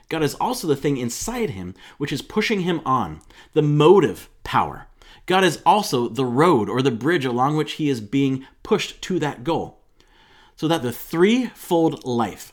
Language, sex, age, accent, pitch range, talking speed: English, male, 30-49, American, 115-165 Hz, 175 wpm